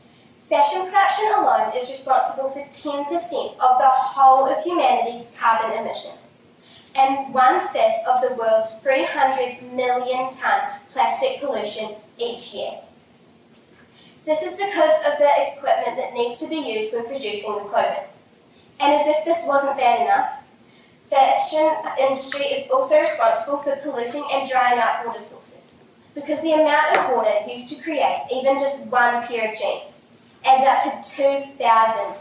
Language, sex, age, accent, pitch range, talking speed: English, female, 10-29, Australian, 250-310 Hz, 145 wpm